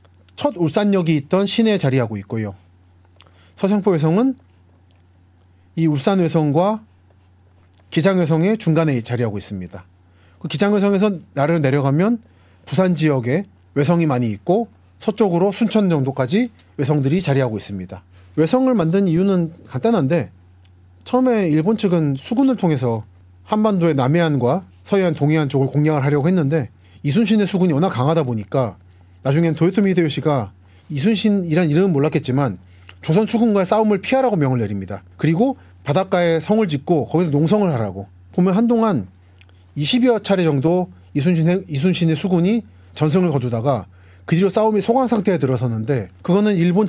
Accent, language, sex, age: native, Korean, male, 40-59